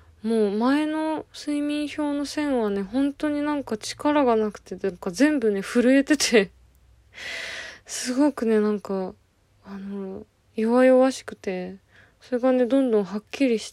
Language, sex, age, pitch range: Japanese, female, 20-39, 190-245 Hz